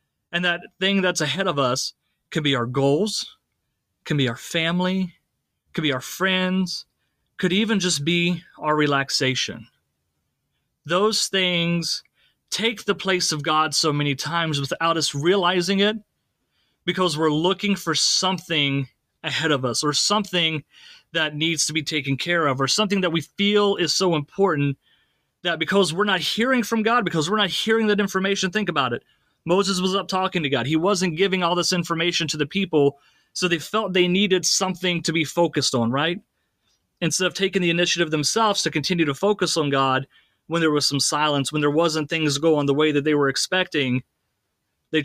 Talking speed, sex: 180 wpm, male